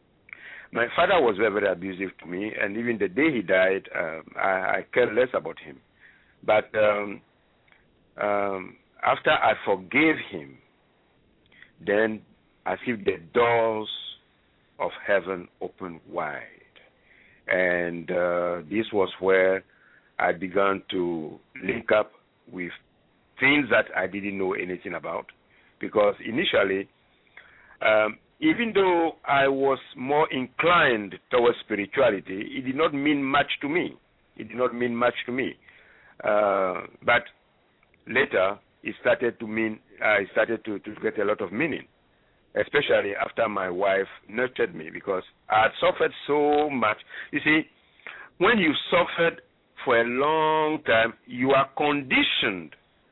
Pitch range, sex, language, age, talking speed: 95-150 Hz, male, English, 60-79, 135 wpm